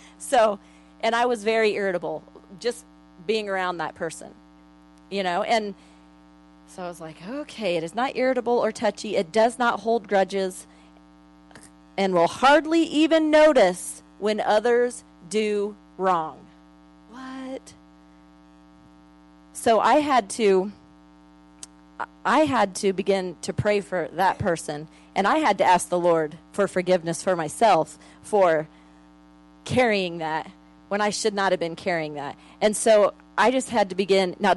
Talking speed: 145 wpm